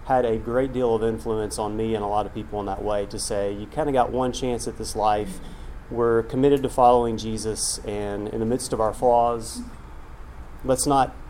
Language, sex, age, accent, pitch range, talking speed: English, male, 30-49, American, 105-120 Hz, 220 wpm